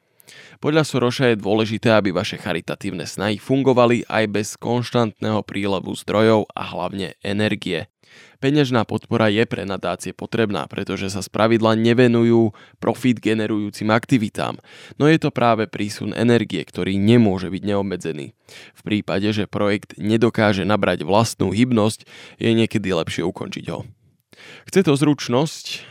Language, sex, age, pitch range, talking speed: Slovak, male, 20-39, 100-120 Hz, 130 wpm